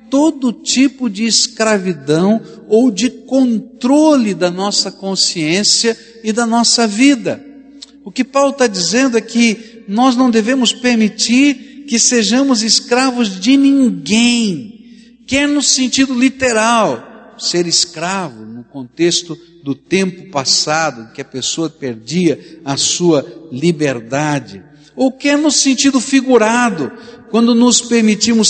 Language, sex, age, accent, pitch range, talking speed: Portuguese, male, 60-79, Brazilian, 175-240 Hz, 120 wpm